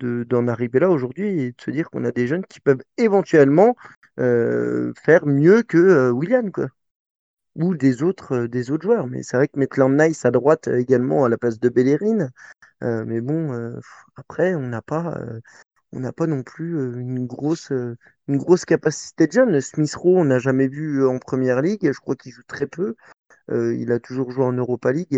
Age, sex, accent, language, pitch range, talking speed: 30-49, male, French, French, 125-165 Hz, 205 wpm